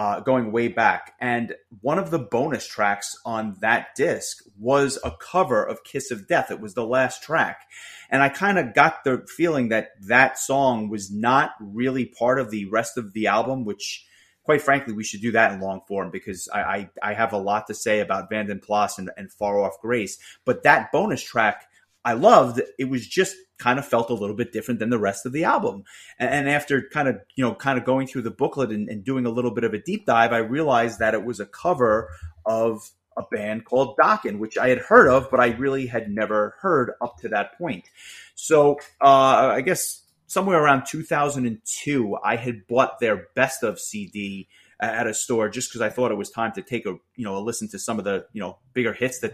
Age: 30-49